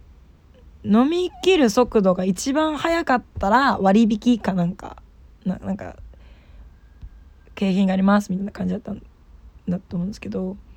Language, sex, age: Japanese, female, 20-39